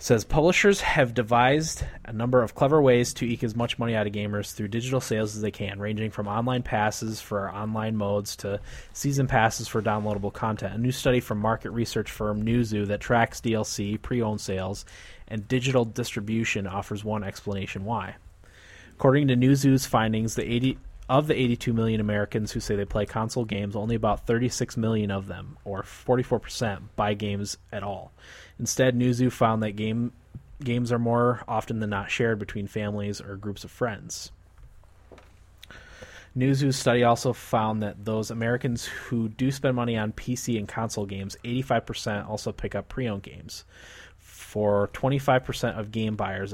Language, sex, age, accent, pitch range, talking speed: English, male, 20-39, American, 100-120 Hz, 170 wpm